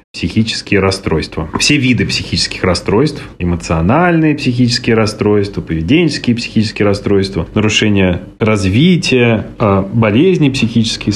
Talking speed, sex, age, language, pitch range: 85 wpm, male, 30-49, Russian, 95-120 Hz